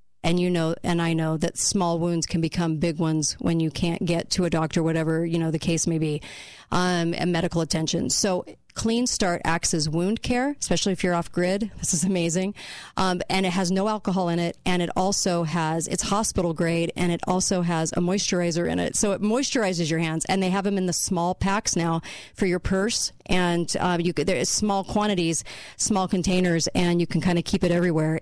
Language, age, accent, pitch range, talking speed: English, 40-59, American, 165-190 Hz, 220 wpm